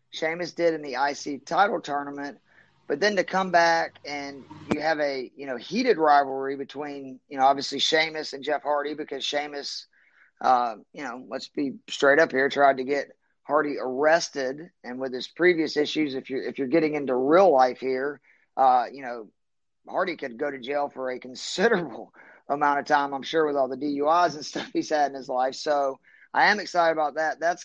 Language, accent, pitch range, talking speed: English, American, 135-155 Hz, 195 wpm